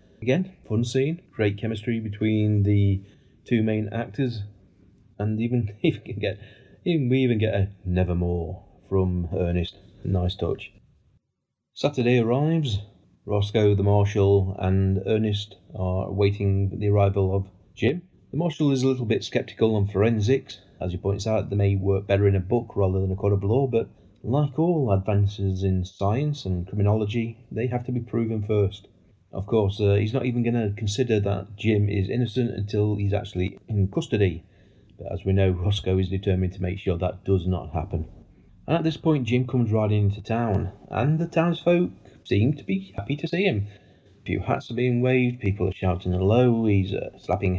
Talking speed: 180 wpm